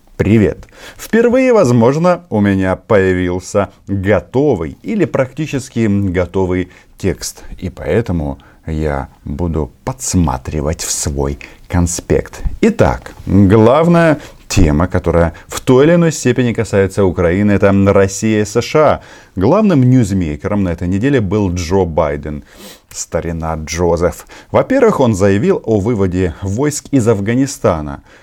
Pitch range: 85-115 Hz